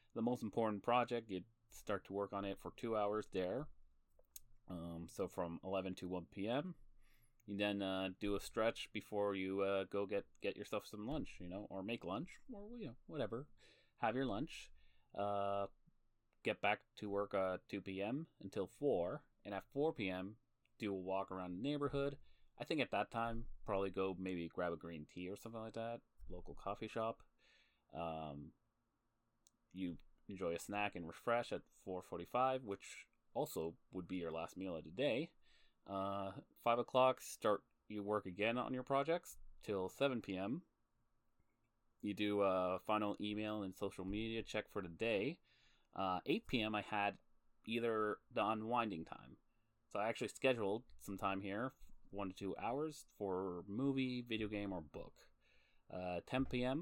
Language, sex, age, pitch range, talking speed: English, male, 30-49, 95-115 Hz, 170 wpm